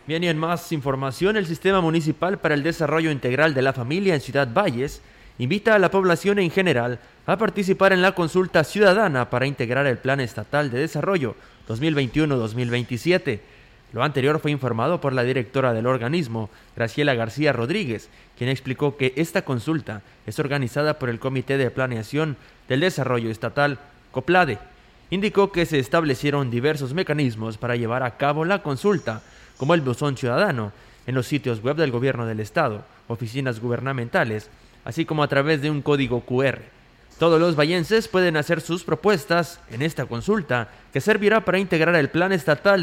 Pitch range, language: 125-170 Hz, Spanish